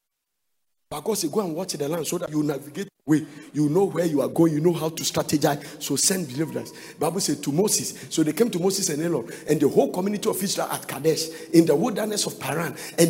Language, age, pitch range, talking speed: English, 50-69, 165-235 Hz, 235 wpm